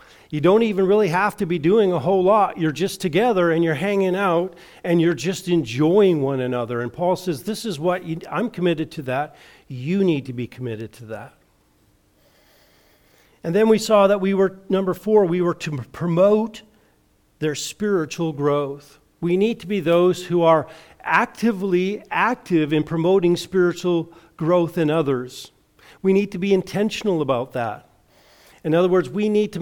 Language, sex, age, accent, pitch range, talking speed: English, male, 50-69, American, 155-195 Hz, 170 wpm